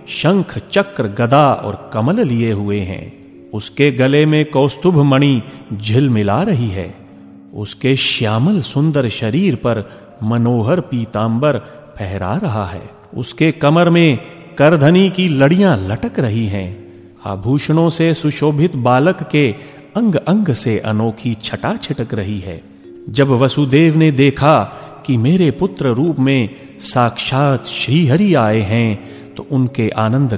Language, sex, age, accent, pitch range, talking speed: Hindi, male, 40-59, native, 110-155 Hz, 125 wpm